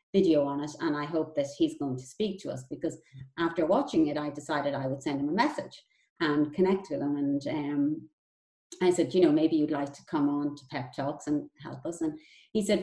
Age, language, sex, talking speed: 30-49, English, female, 235 wpm